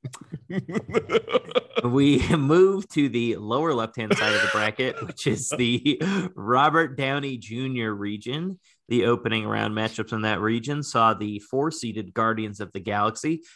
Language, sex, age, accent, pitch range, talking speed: English, male, 30-49, American, 105-140 Hz, 135 wpm